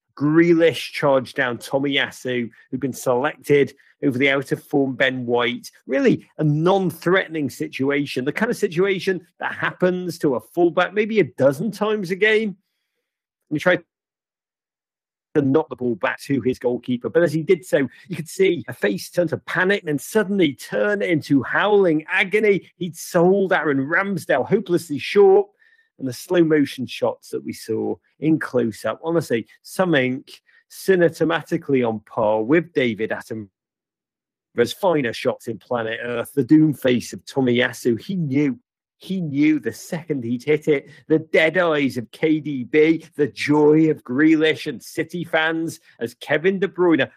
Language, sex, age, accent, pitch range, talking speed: English, male, 40-59, British, 135-180 Hz, 155 wpm